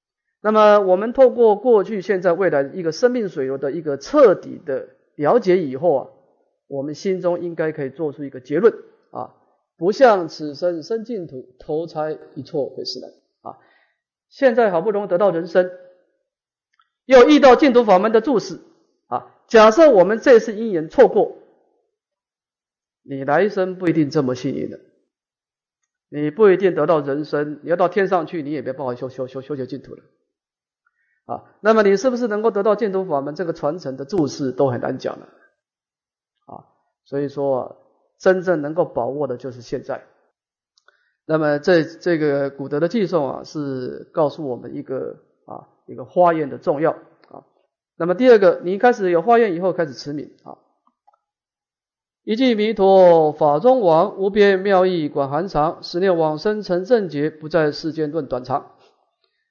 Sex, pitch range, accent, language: male, 150-225 Hz, Chinese, English